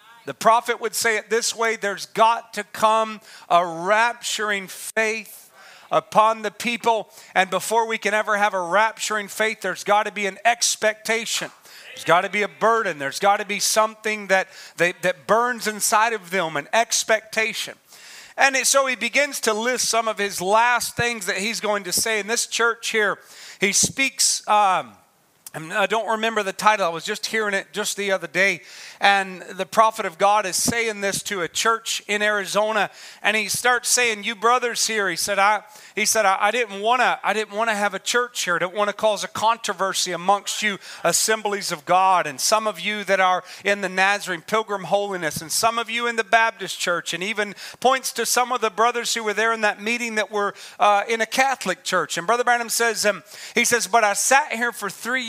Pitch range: 195-230 Hz